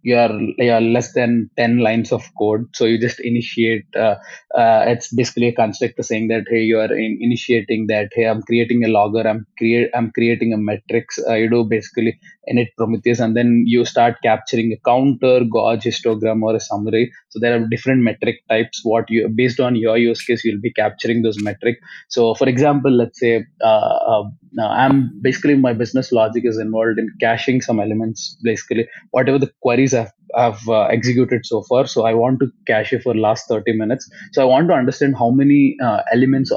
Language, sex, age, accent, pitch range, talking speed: English, male, 20-39, Indian, 115-125 Hz, 200 wpm